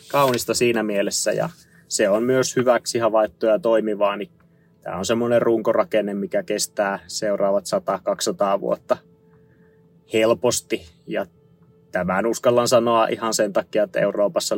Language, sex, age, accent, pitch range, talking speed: Finnish, male, 20-39, native, 105-130 Hz, 125 wpm